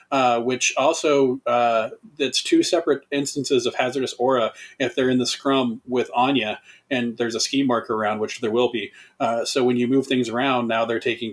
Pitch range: 120-140 Hz